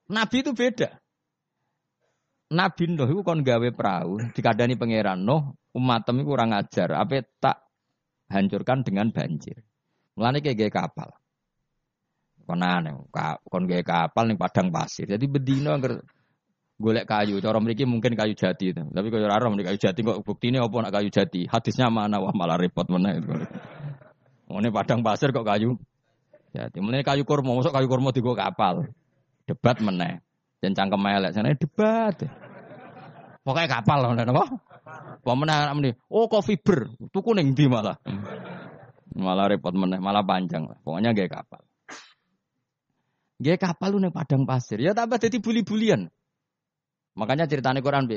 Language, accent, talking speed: Indonesian, native, 130 wpm